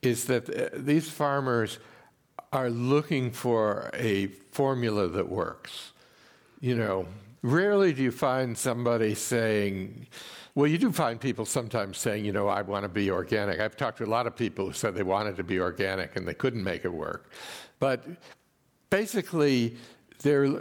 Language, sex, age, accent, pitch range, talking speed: English, male, 60-79, American, 100-130 Hz, 165 wpm